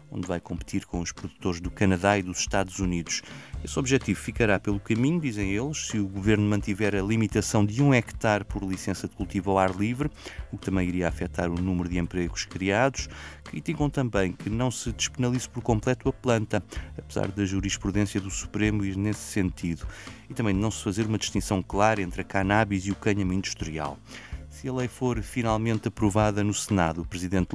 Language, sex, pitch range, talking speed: Portuguese, male, 95-115 Hz, 195 wpm